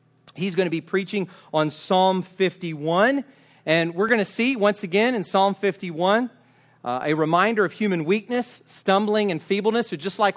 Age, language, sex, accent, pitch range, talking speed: 40-59, English, male, American, 160-200 Hz, 175 wpm